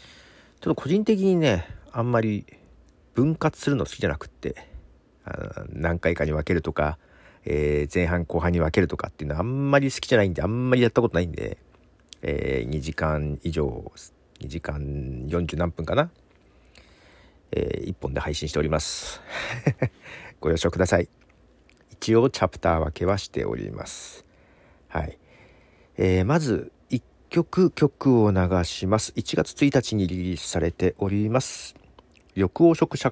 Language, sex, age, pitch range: Japanese, male, 50-69, 80-130 Hz